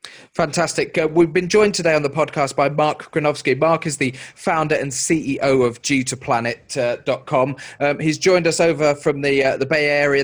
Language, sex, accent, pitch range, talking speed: English, male, British, 130-155 Hz, 190 wpm